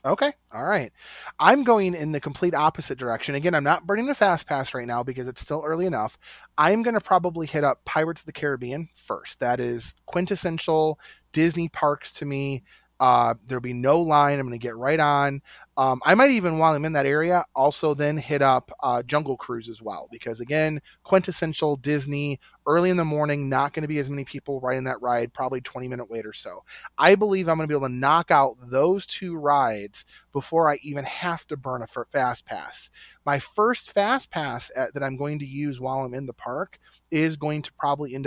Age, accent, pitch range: 30-49, American, 125-155 Hz